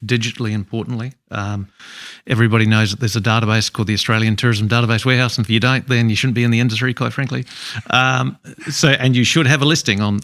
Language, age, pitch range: English, 40-59, 105-125 Hz